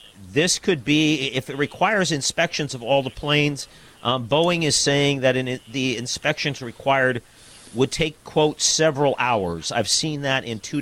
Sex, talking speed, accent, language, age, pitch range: male, 170 wpm, American, English, 50-69, 120-150 Hz